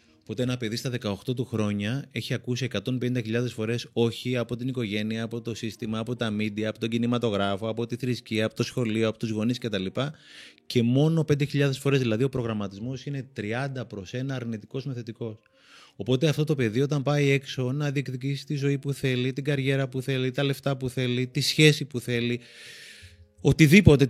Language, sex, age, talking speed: Greek, male, 30-49, 185 wpm